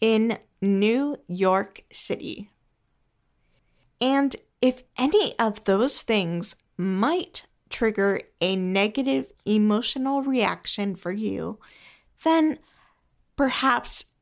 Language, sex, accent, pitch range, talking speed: English, female, American, 195-245 Hz, 85 wpm